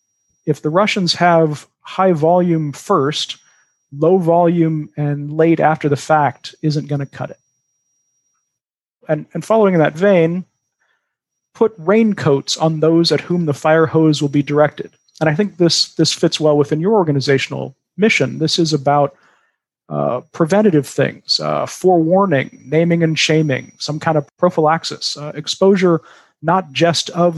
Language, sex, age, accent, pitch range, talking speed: English, male, 40-59, American, 140-170 Hz, 150 wpm